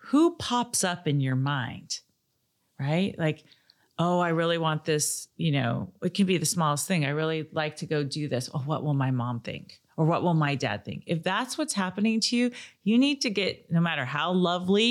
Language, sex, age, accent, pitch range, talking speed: English, female, 40-59, American, 155-195 Hz, 215 wpm